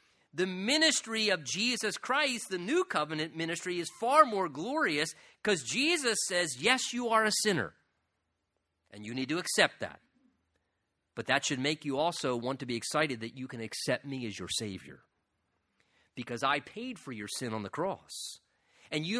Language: English